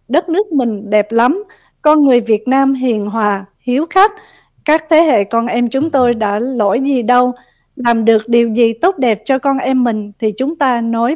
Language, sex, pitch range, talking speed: Vietnamese, female, 225-290 Hz, 205 wpm